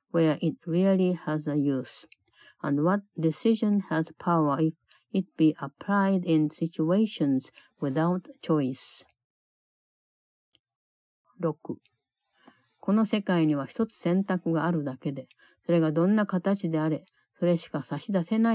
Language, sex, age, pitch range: Japanese, female, 50-69, 155-190 Hz